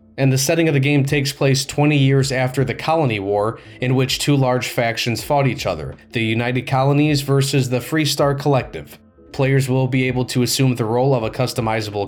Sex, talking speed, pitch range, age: male, 200 wpm, 115-145 Hz, 20-39